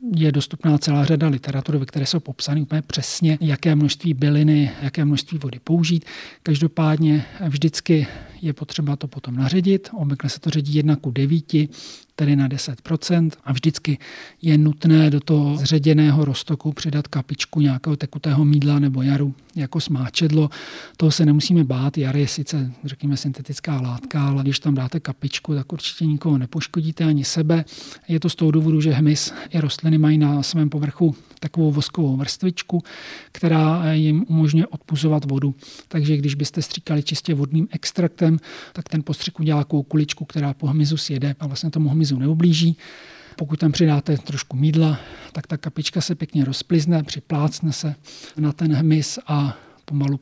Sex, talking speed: male, 160 wpm